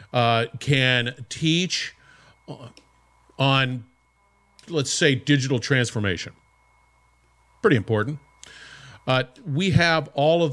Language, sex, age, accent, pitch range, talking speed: English, male, 50-69, American, 120-155 Hz, 85 wpm